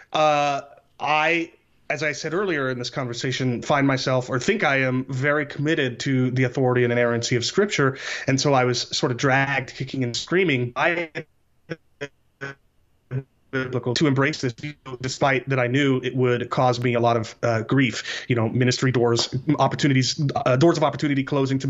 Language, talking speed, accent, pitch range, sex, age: English, 170 wpm, American, 125-145 Hz, male, 30-49